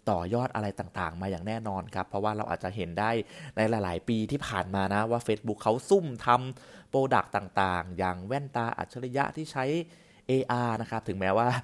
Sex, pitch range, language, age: male, 100-135 Hz, Thai, 20-39